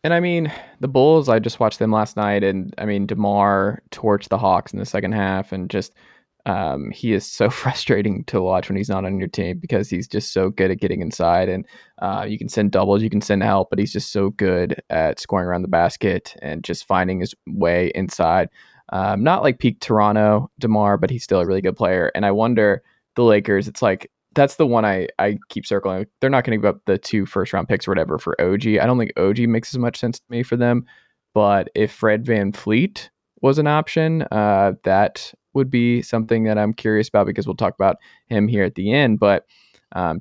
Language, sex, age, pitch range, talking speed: English, male, 20-39, 100-115 Hz, 230 wpm